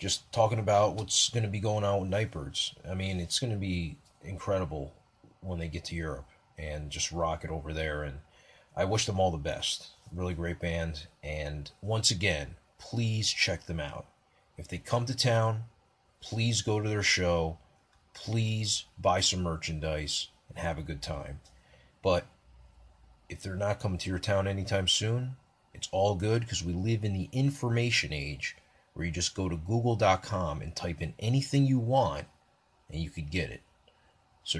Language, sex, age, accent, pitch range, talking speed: English, male, 30-49, American, 80-110 Hz, 175 wpm